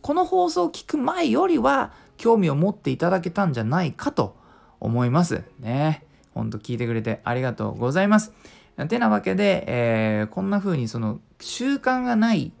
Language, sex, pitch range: Japanese, male, 125-205 Hz